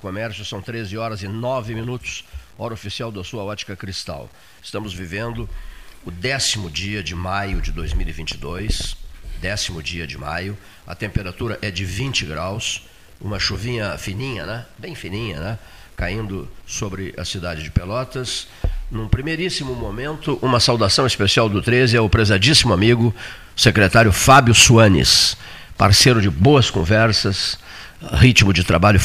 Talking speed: 140 wpm